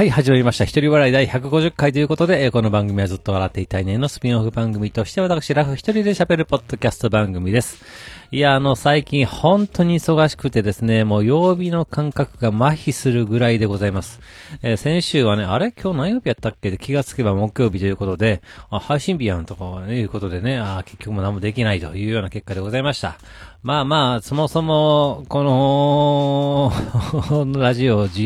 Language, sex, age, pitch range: Japanese, male, 40-59, 105-135 Hz